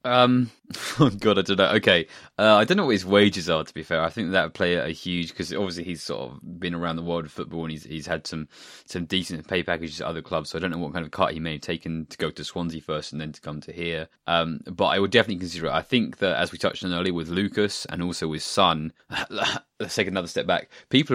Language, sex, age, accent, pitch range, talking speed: English, male, 20-39, British, 80-95 Hz, 280 wpm